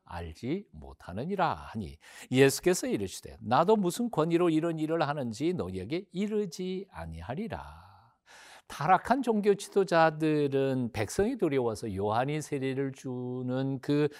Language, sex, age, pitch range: Korean, male, 60-79, 105-160 Hz